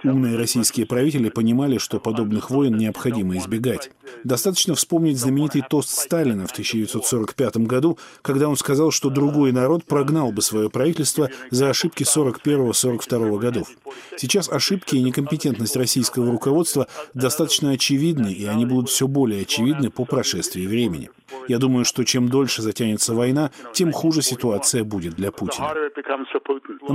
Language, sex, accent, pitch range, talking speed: Russian, male, native, 120-145 Hz, 140 wpm